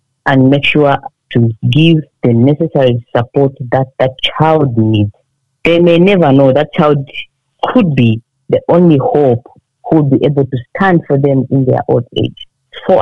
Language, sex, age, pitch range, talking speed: English, female, 40-59, 135-170 Hz, 165 wpm